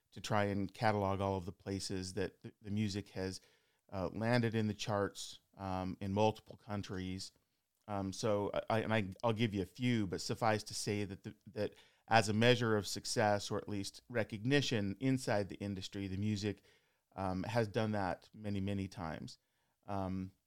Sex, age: male, 30-49